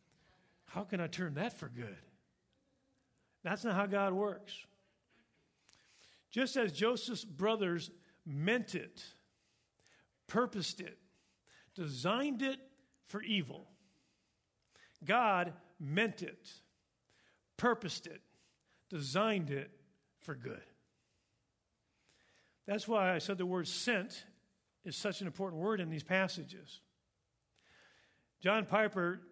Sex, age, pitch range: male, 50-69, 170-220 Hz